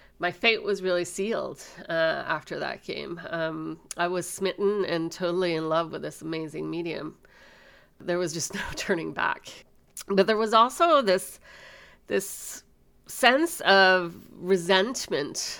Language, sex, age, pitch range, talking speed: English, female, 40-59, 170-210 Hz, 140 wpm